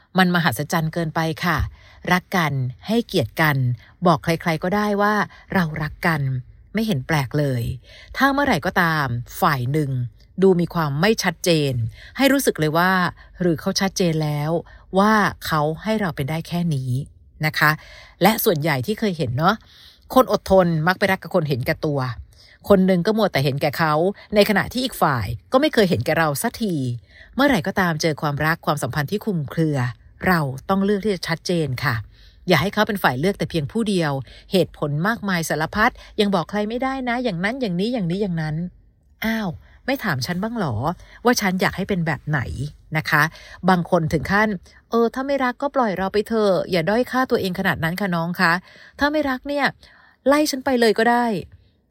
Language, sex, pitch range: Thai, female, 155-205 Hz